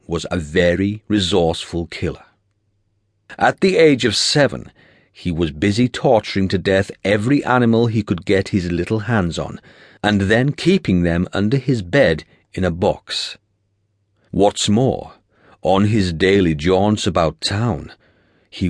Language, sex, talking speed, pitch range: English, male, 140 wpm, 95-120 Hz